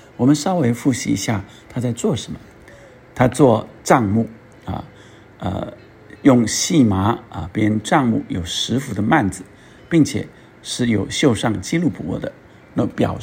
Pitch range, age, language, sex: 105-125 Hz, 50-69, Chinese, male